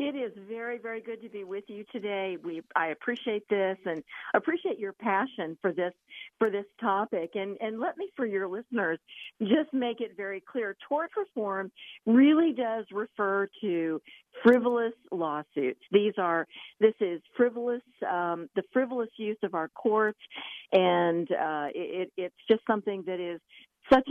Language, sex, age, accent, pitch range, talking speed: English, female, 50-69, American, 185-245 Hz, 160 wpm